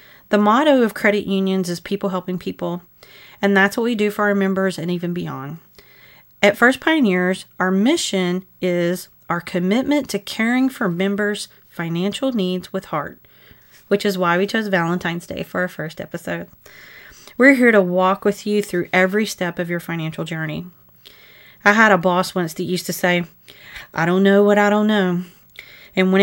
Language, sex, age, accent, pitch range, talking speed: English, female, 30-49, American, 180-215 Hz, 180 wpm